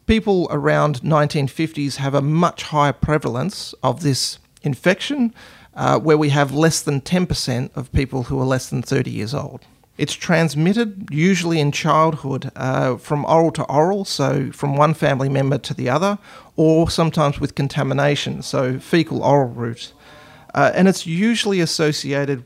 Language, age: English, 40-59